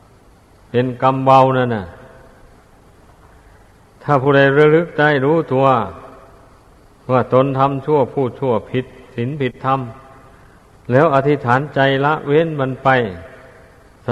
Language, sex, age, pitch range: Thai, male, 60-79, 120-140 Hz